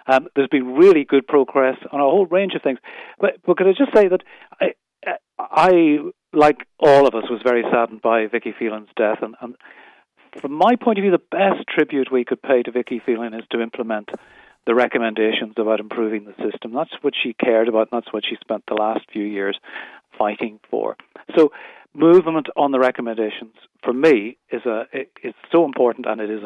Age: 40-59